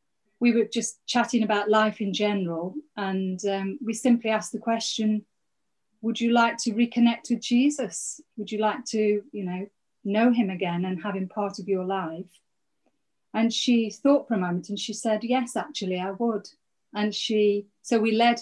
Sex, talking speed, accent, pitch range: female, 180 wpm, British, 195-235 Hz